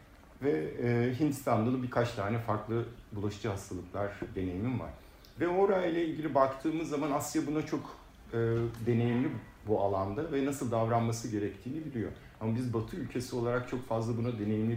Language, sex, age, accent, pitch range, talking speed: Turkish, male, 50-69, native, 105-135 Hz, 150 wpm